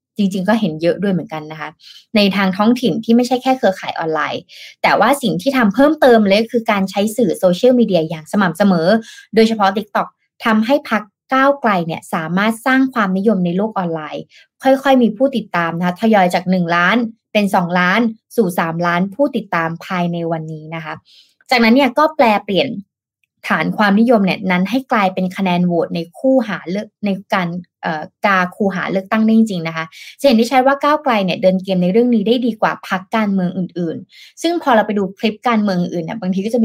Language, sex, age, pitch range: Thai, female, 20-39, 175-230 Hz